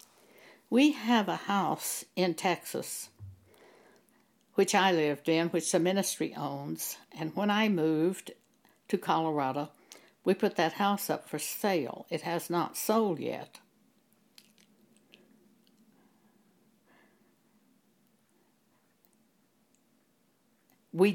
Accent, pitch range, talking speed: American, 170-230 Hz, 95 wpm